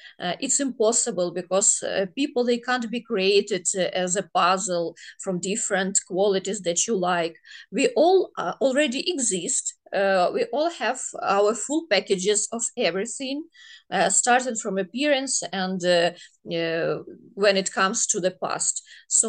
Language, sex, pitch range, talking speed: English, female, 190-255 Hz, 150 wpm